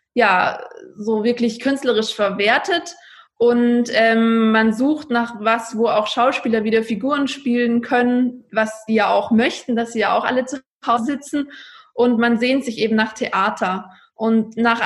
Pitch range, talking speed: 210-240 Hz, 160 wpm